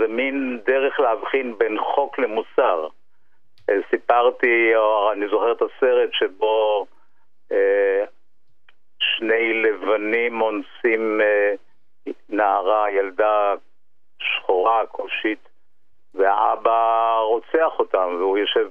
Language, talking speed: Hebrew, 90 wpm